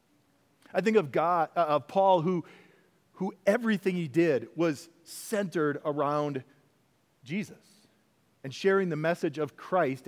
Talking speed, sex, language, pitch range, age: 130 wpm, male, English, 145-190 Hz, 40-59